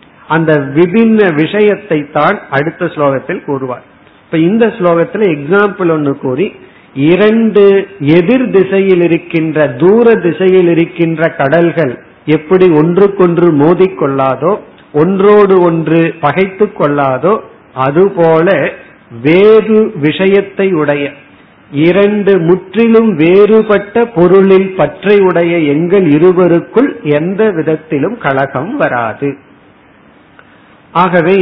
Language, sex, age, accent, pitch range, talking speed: Tamil, male, 50-69, native, 150-190 Hz, 80 wpm